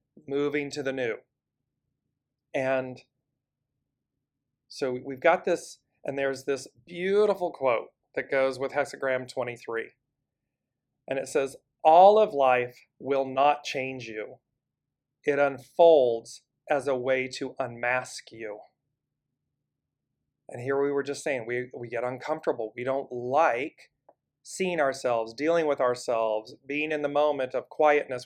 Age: 40-59